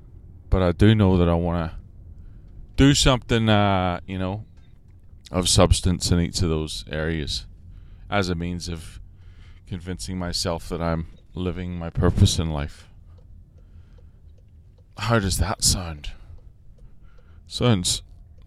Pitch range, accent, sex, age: 85-100 Hz, American, male, 20-39